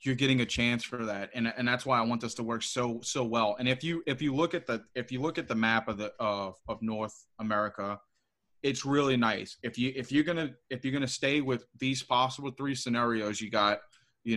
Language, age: English, 30-49